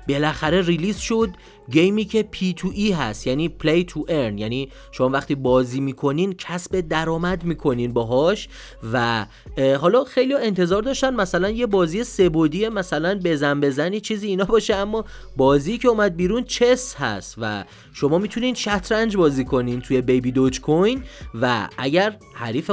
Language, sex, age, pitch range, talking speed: Persian, male, 30-49, 135-200 Hz, 155 wpm